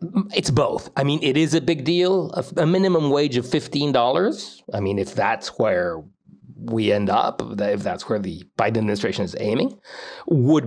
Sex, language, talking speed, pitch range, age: male, English, 180 wpm, 110-155 Hz, 40-59